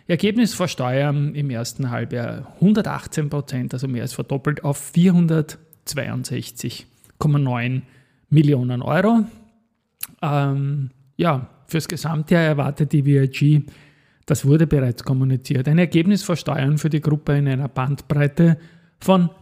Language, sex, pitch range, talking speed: German, male, 135-165 Hz, 115 wpm